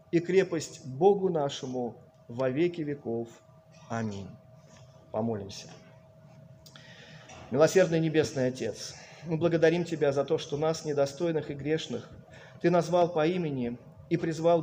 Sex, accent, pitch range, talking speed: male, native, 135-175 Hz, 115 wpm